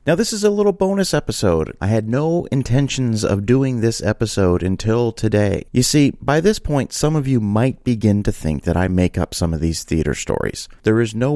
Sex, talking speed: male, 215 wpm